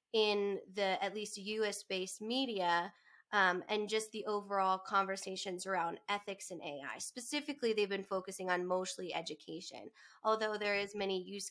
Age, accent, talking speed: 20-39, American, 145 wpm